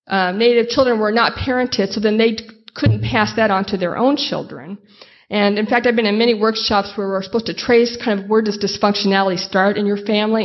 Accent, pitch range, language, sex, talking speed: American, 195-225 Hz, English, female, 225 wpm